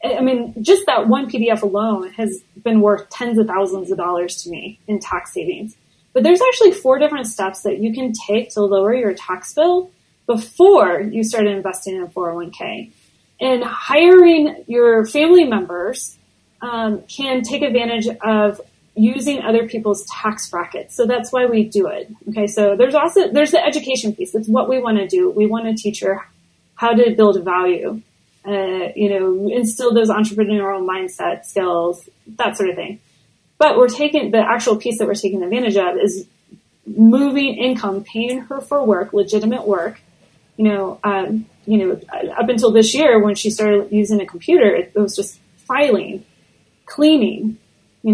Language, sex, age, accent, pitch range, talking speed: English, female, 30-49, American, 200-245 Hz, 175 wpm